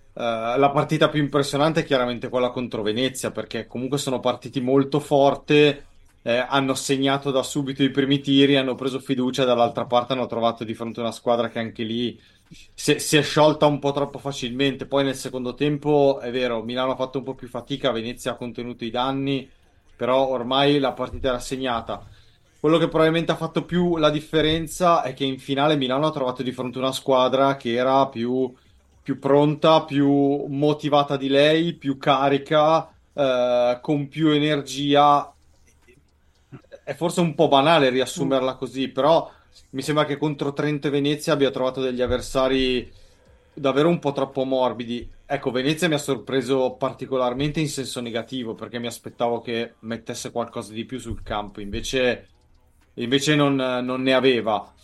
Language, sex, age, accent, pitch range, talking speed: Italian, male, 30-49, native, 120-145 Hz, 170 wpm